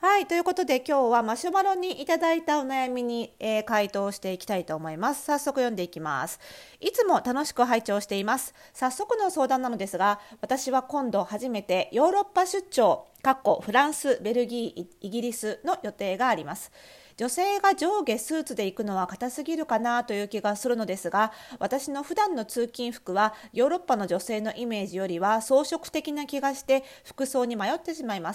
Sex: female